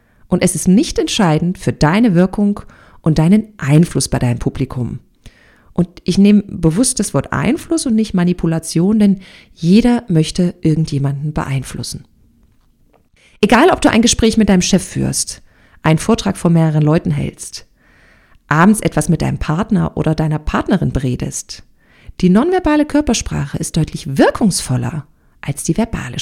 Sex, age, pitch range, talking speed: female, 40-59, 150-215 Hz, 140 wpm